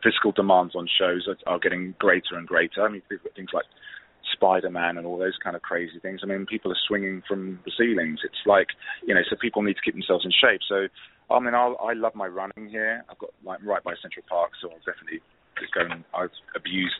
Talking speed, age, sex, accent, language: 245 wpm, 30-49, male, British, English